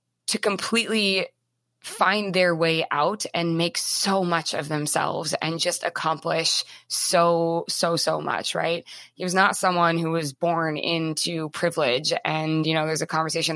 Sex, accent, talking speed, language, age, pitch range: female, American, 155 wpm, English, 20-39, 155-180 Hz